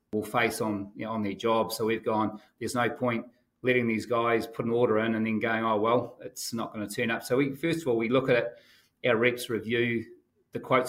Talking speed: 255 wpm